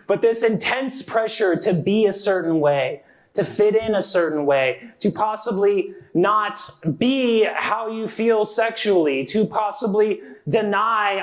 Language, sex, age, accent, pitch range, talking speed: English, male, 30-49, American, 180-235 Hz, 135 wpm